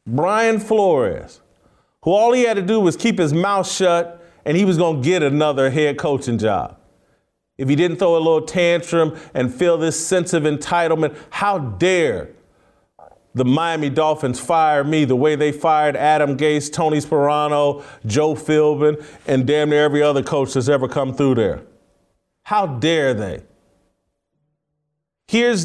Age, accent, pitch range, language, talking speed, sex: 40-59, American, 150-225 Hz, English, 160 wpm, male